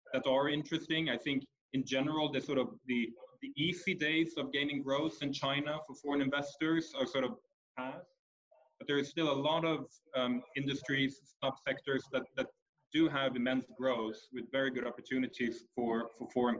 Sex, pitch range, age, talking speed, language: male, 120-145 Hz, 20-39, 175 wpm, English